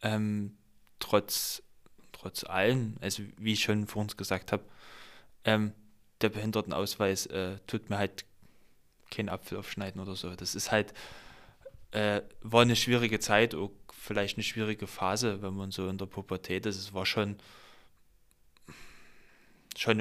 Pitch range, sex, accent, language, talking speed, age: 100-110 Hz, male, German, German, 140 wpm, 10-29